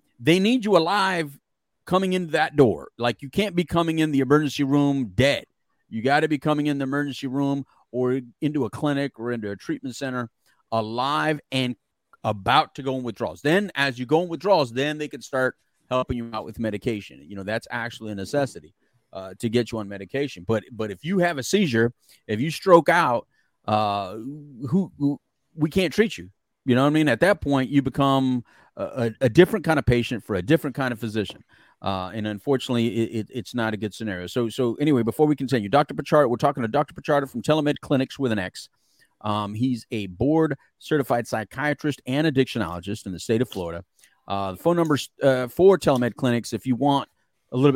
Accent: American